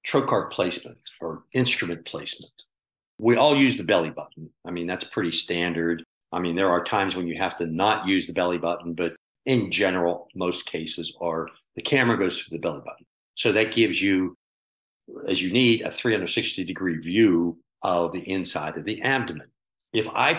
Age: 50-69